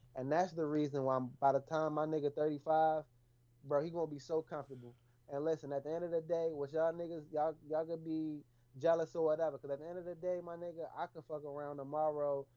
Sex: male